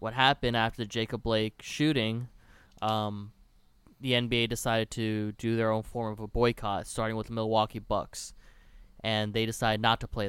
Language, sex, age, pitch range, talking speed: English, male, 20-39, 110-125 Hz, 175 wpm